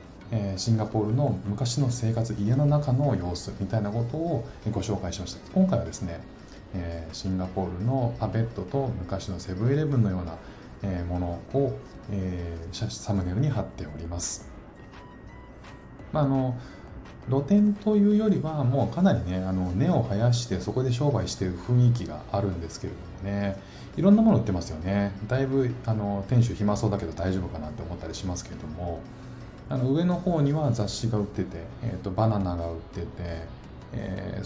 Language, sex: Japanese, male